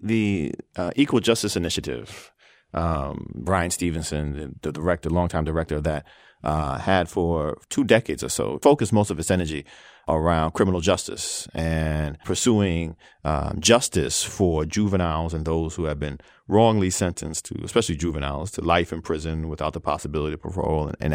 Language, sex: English, male